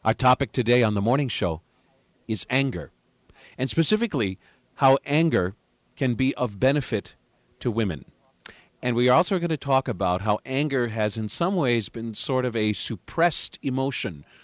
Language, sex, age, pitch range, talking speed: English, male, 50-69, 95-130 Hz, 160 wpm